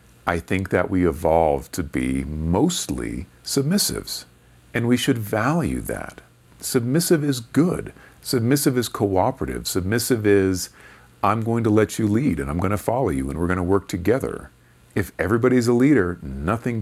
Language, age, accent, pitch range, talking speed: English, 40-59, American, 75-100 Hz, 160 wpm